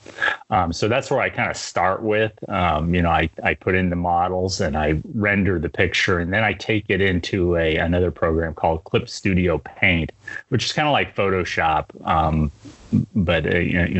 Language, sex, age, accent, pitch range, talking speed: English, male, 30-49, American, 80-95 Hz, 190 wpm